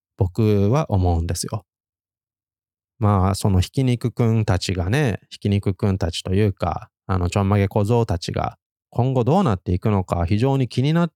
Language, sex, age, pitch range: Japanese, male, 20-39, 95-120 Hz